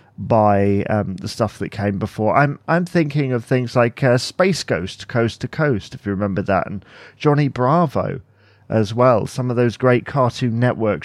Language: English